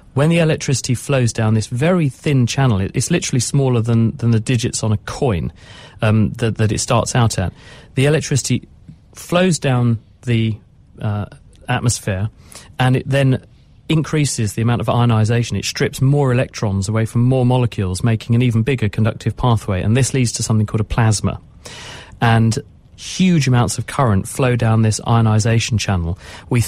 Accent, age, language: British, 40-59, English